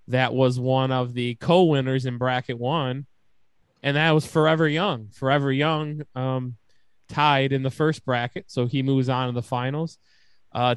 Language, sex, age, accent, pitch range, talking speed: English, male, 20-39, American, 130-155 Hz, 165 wpm